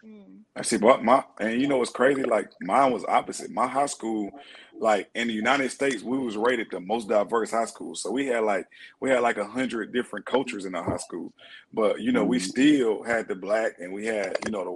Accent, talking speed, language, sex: American, 235 wpm, English, male